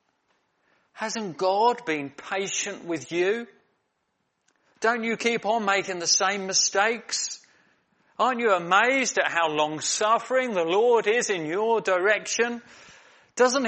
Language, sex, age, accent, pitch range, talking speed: English, male, 40-59, British, 145-225 Hz, 120 wpm